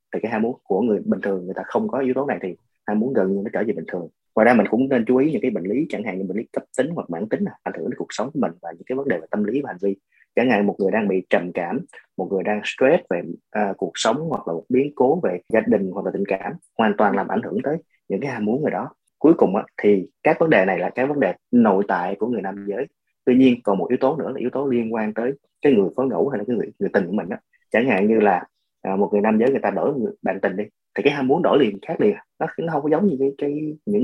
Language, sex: Vietnamese, male